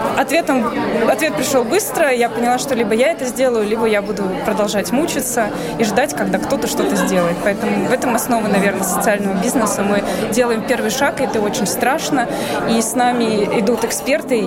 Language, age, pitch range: Russian, 20-39, 215-250 Hz